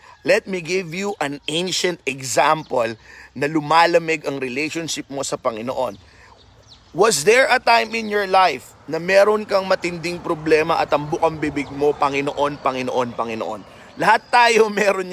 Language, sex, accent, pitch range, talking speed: Filipino, male, native, 150-215 Hz, 145 wpm